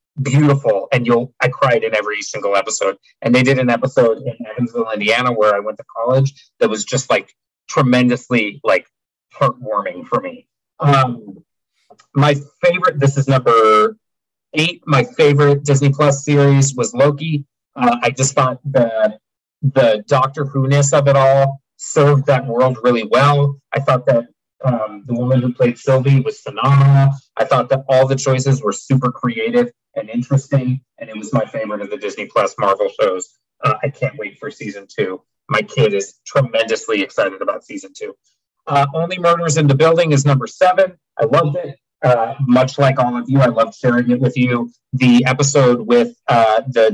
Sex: male